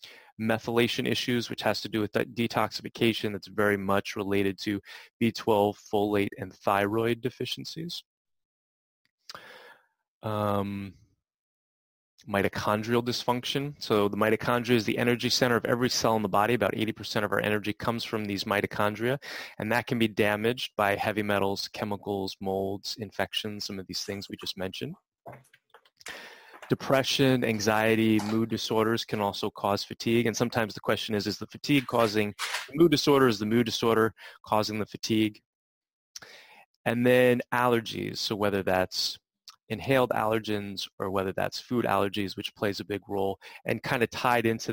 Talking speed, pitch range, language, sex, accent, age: 150 wpm, 100-115 Hz, English, male, American, 30-49